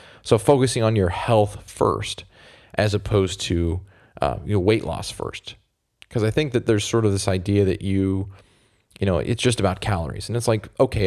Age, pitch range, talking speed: 20-39, 95-110 Hz, 190 wpm